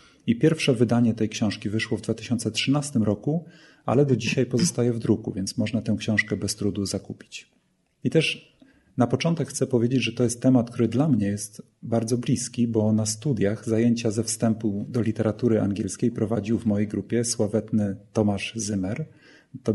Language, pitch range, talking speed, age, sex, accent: Polish, 105-125 Hz, 165 wpm, 30-49, male, native